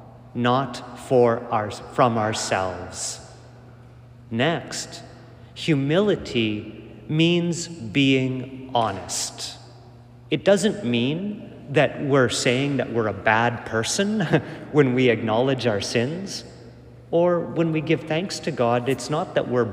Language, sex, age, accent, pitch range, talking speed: English, male, 40-59, American, 120-165 Hz, 105 wpm